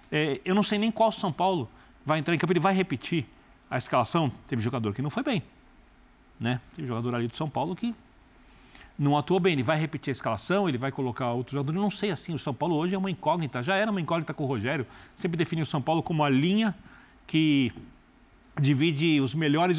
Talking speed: 225 wpm